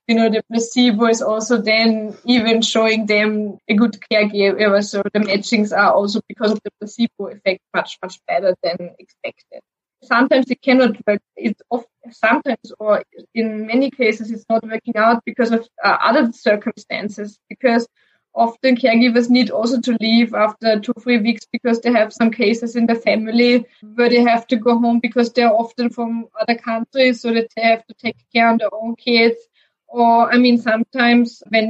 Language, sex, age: English, female, 20-39